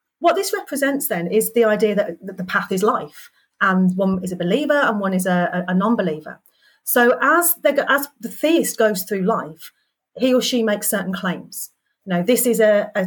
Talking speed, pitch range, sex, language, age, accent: 205 wpm, 190-255 Hz, female, English, 30-49, British